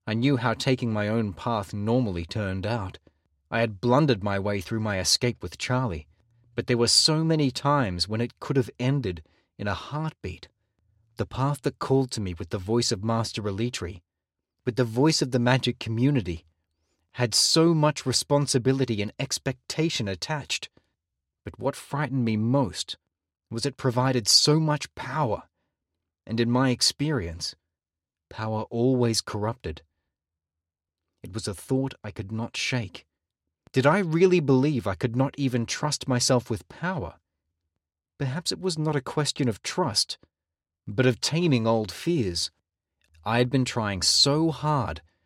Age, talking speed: 30-49, 155 wpm